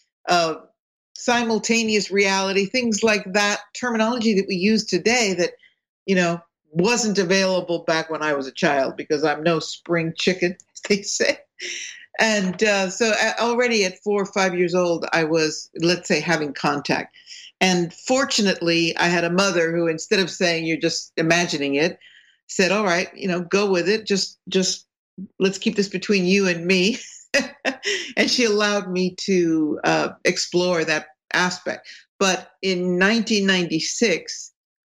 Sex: female